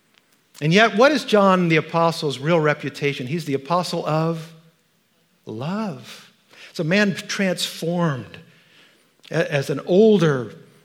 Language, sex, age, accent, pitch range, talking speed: English, male, 50-69, American, 130-165 Hz, 115 wpm